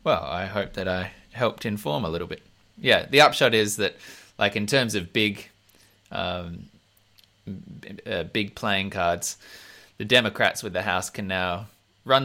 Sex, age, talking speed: male, 20-39, 160 wpm